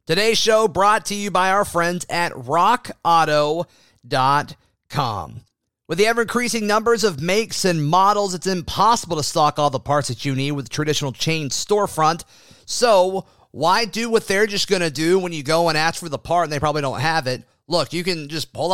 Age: 30-49